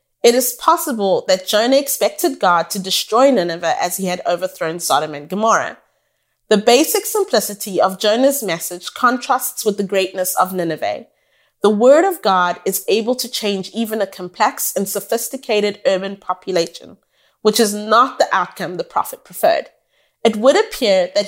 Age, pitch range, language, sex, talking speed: 30-49, 190-260 Hz, English, female, 160 wpm